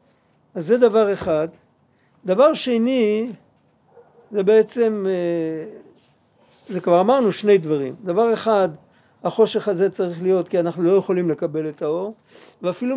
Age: 50-69